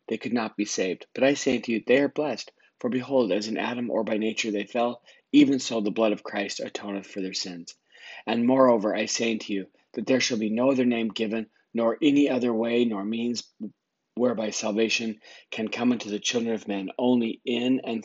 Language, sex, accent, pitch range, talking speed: English, male, American, 105-125 Hz, 215 wpm